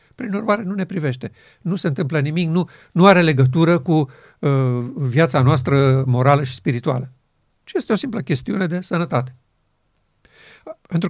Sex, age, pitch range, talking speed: male, 50-69, 135-170 Hz, 150 wpm